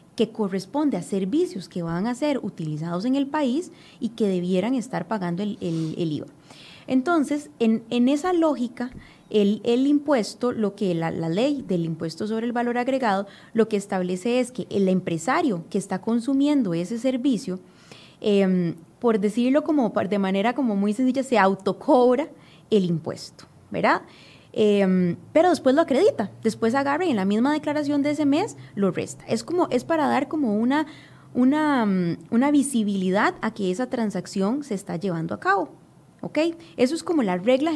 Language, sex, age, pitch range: Spanish, female, 20-39, 190-275 Hz